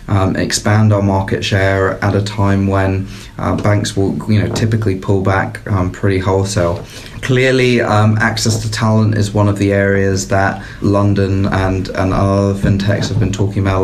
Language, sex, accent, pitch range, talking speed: English, male, British, 95-110 Hz, 175 wpm